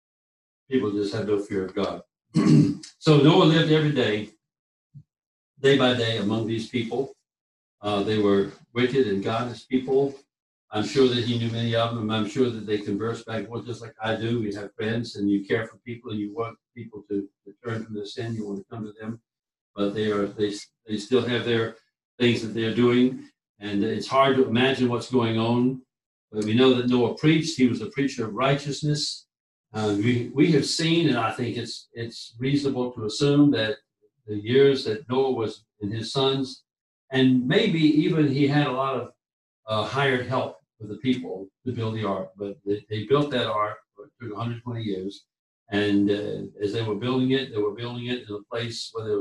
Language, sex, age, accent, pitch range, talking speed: English, male, 60-79, American, 105-130 Hz, 200 wpm